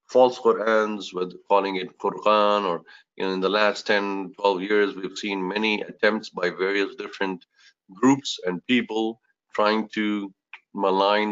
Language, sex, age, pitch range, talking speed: English, male, 50-69, 95-110 Hz, 140 wpm